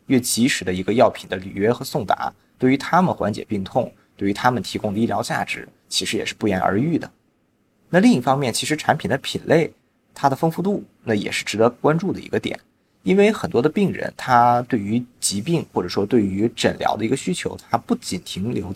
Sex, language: male, Chinese